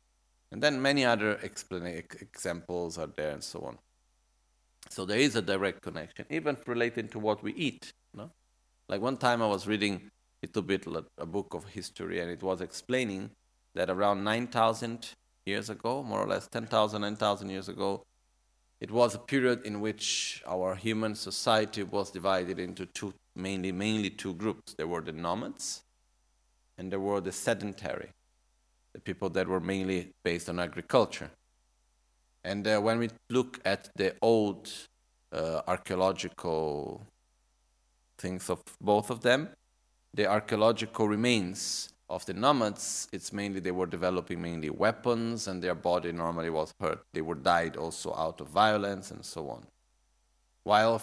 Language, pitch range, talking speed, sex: Italian, 95-110 Hz, 155 wpm, male